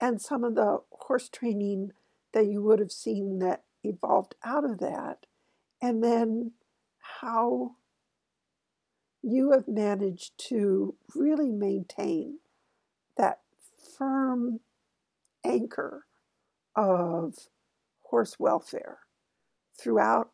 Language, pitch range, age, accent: English, 200-245 Hz, 60-79, American